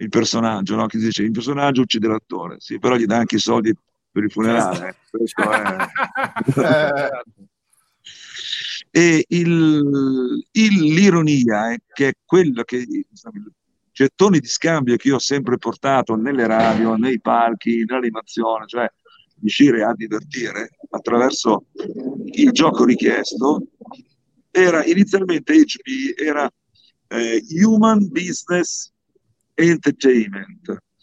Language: Italian